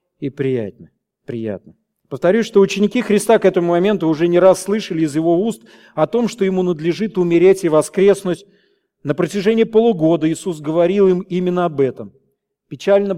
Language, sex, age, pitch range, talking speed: Russian, male, 40-59, 150-195 Hz, 160 wpm